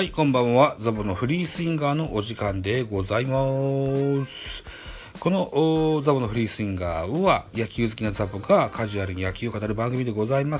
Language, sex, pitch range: Japanese, male, 95-150 Hz